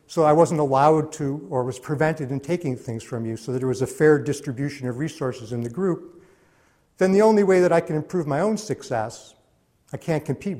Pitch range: 130-165 Hz